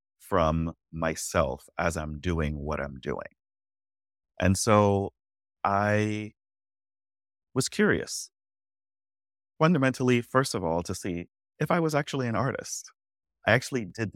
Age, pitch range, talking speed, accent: 30-49, 80-100 Hz, 120 wpm, American